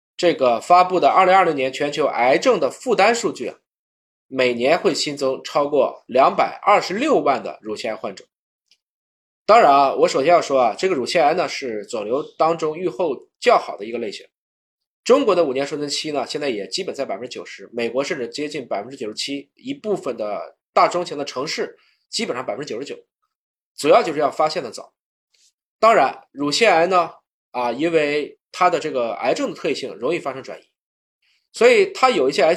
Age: 20-39